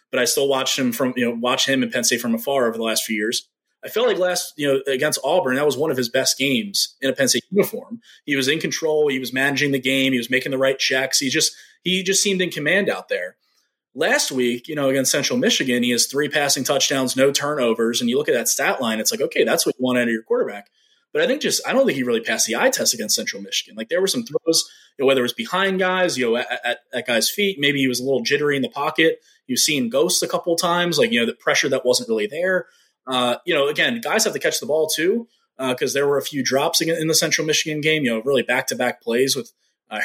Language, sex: English, male